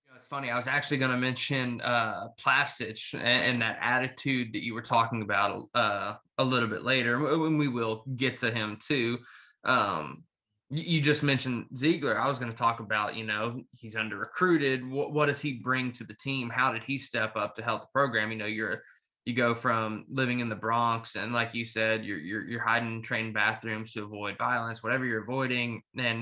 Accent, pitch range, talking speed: American, 110-130 Hz, 210 wpm